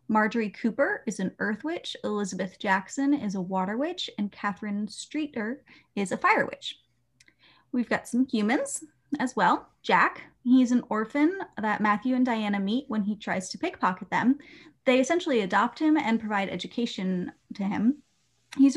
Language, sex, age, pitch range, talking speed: English, female, 20-39, 195-260 Hz, 160 wpm